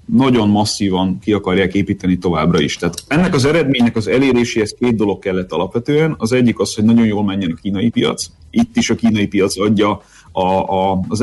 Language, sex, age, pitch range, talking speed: Hungarian, male, 30-49, 100-120 Hz, 180 wpm